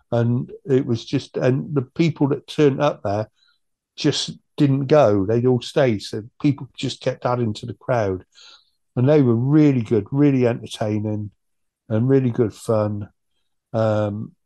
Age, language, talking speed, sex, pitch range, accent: 50-69, English, 155 wpm, male, 115-135 Hz, British